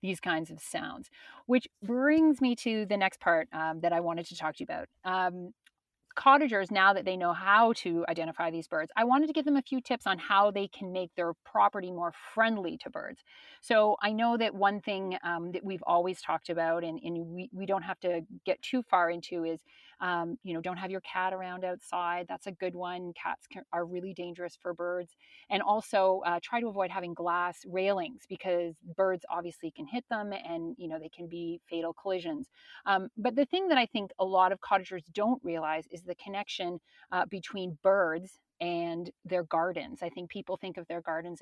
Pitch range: 175-210 Hz